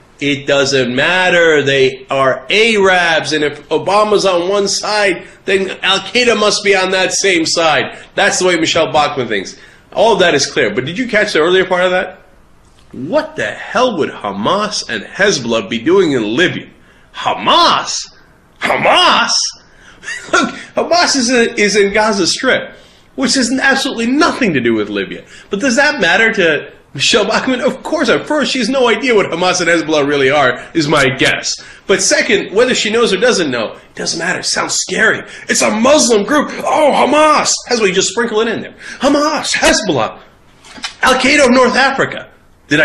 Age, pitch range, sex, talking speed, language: 30-49, 155-245 Hz, male, 180 wpm, English